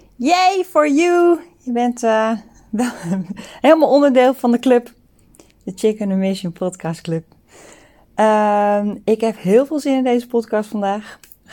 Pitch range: 175-230 Hz